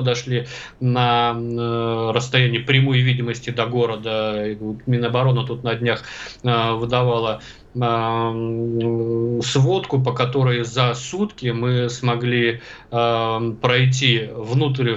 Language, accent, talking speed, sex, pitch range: Russian, native, 90 wpm, male, 115-130 Hz